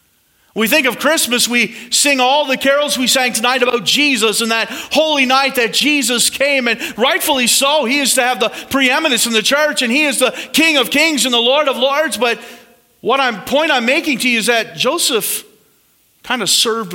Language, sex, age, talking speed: English, male, 40-59, 210 wpm